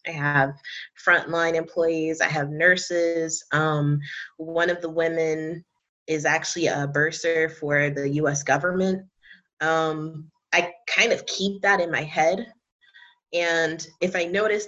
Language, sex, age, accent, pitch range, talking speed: English, female, 20-39, American, 145-170 Hz, 135 wpm